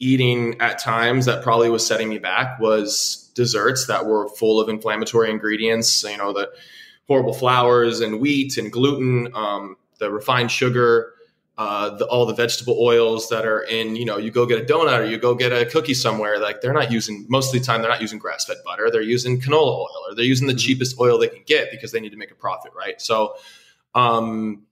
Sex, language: male, English